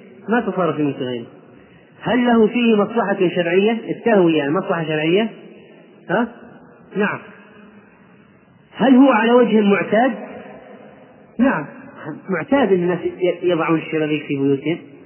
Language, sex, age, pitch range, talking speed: Arabic, male, 30-49, 170-215 Hz, 110 wpm